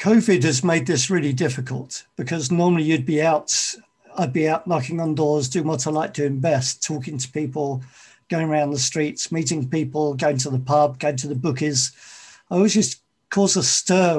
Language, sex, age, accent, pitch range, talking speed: English, male, 50-69, British, 145-175 Hz, 195 wpm